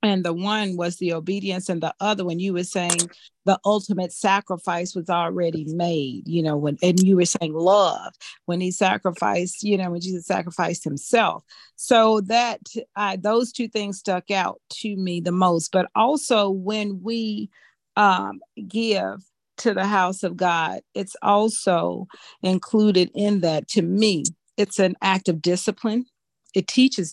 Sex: female